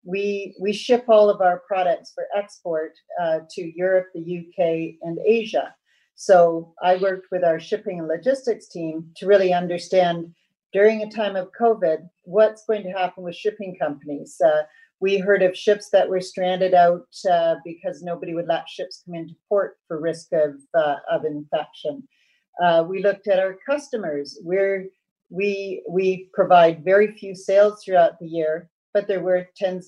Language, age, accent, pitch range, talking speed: English, 40-59, American, 165-200 Hz, 170 wpm